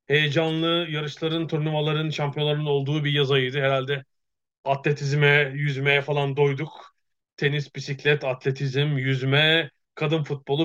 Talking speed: 105 wpm